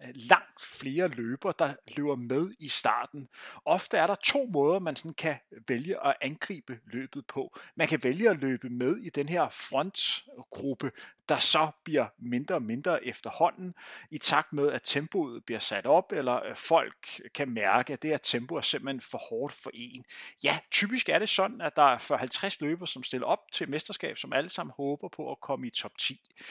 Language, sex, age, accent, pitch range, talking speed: Danish, male, 30-49, native, 130-170 Hz, 195 wpm